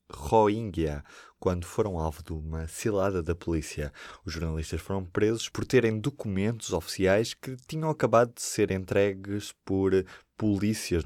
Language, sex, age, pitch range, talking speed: Portuguese, male, 20-39, 85-115 Hz, 135 wpm